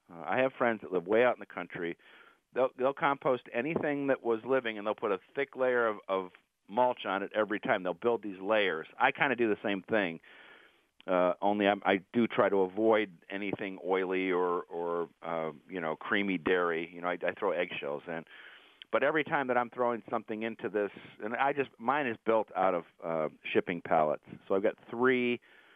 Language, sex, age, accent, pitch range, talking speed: English, male, 50-69, American, 100-125 Hz, 205 wpm